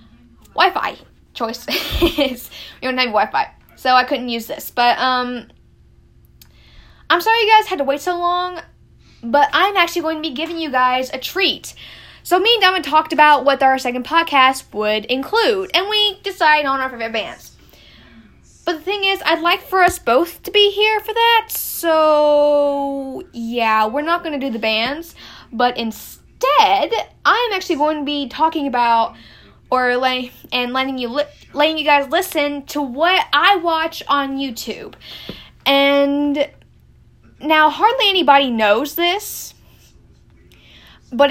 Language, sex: English, female